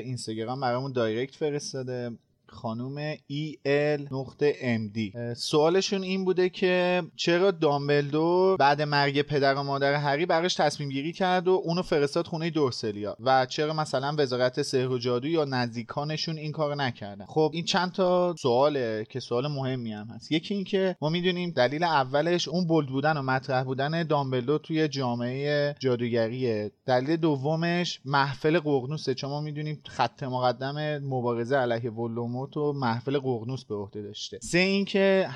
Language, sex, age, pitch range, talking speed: Persian, male, 30-49, 125-160 Hz, 155 wpm